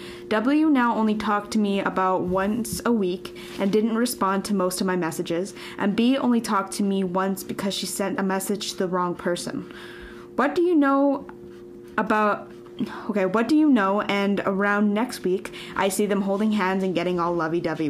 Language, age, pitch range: English, 10-29, 180-215 Hz